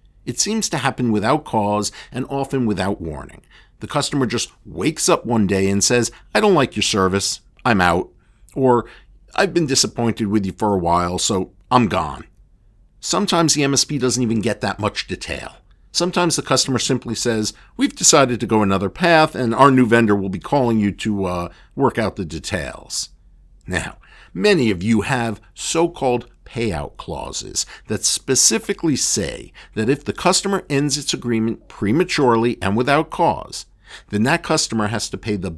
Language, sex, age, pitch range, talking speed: English, male, 50-69, 105-135 Hz, 170 wpm